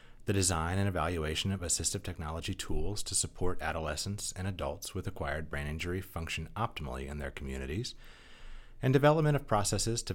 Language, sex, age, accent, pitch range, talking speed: English, male, 30-49, American, 80-105 Hz, 160 wpm